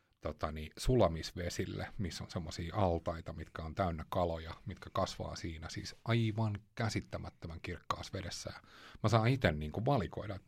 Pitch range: 85-115 Hz